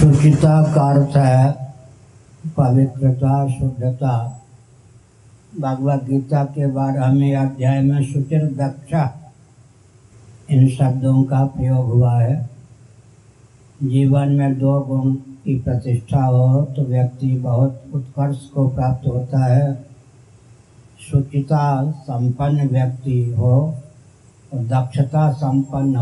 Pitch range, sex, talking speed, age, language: 125-140 Hz, male, 95 wpm, 60-79, Hindi